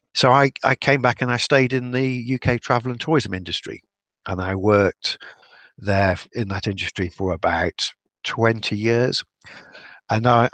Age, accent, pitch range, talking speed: 50-69, British, 95-120 Hz, 160 wpm